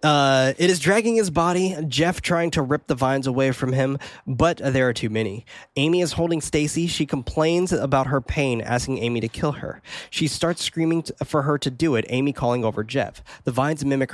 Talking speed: 210 wpm